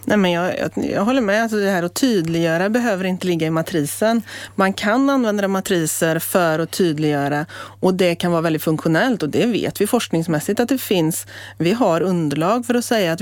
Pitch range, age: 160-205 Hz, 30-49